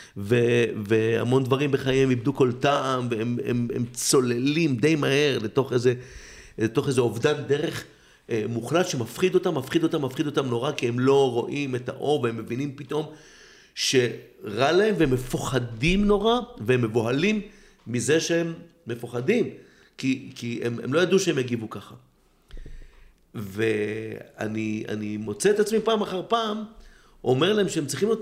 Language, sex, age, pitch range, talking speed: Hebrew, male, 50-69, 120-165 Hz, 140 wpm